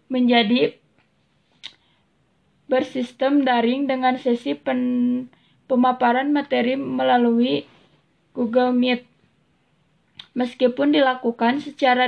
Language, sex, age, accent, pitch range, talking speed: Indonesian, female, 20-39, native, 245-265 Hz, 70 wpm